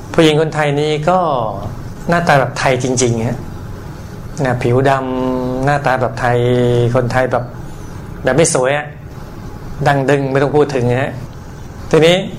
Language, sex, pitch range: Thai, male, 120-145 Hz